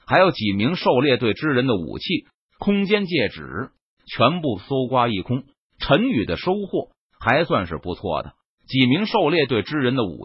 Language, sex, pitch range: Chinese, male, 120-185 Hz